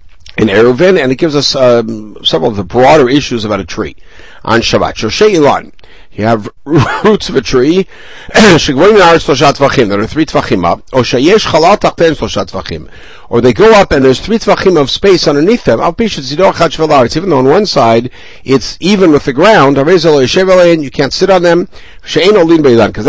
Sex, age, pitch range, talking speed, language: male, 60-79, 110-170 Hz, 155 wpm, English